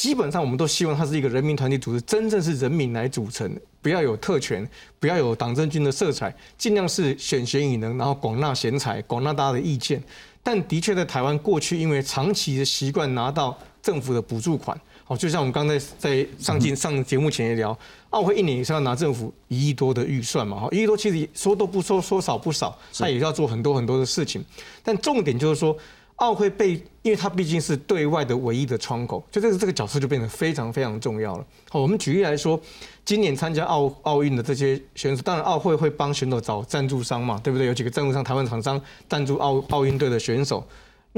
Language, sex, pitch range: Chinese, male, 130-175 Hz